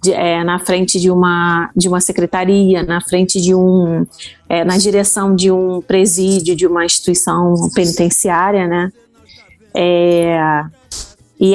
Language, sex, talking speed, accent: Portuguese, female, 135 wpm, Brazilian